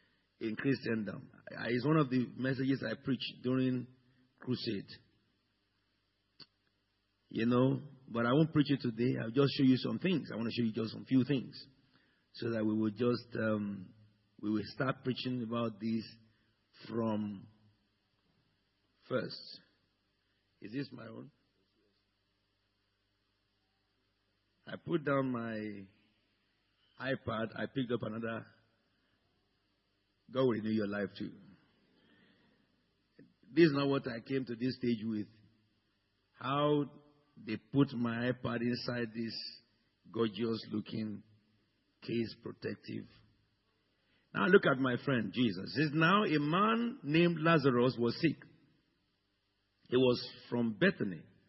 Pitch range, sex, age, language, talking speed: 105-130 Hz, male, 50-69, English, 125 wpm